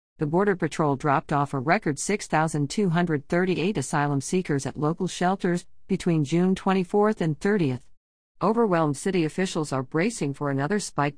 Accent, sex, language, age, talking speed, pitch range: American, female, English, 50-69, 140 wpm, 145-185 Hz